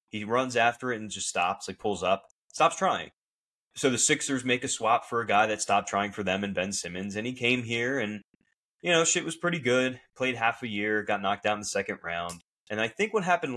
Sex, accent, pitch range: male, American, 100-125 Hz